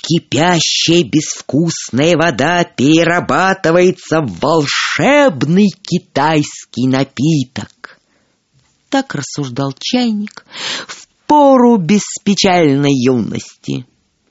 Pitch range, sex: 150-235 Hz, female